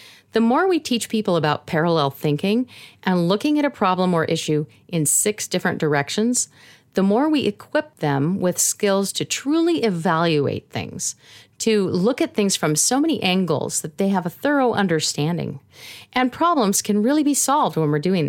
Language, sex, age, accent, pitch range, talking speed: English, female, 40-59, American, 155-225 Hz, 175 wpm